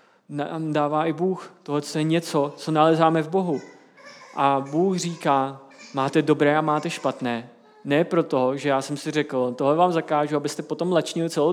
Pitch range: 140-185 Hz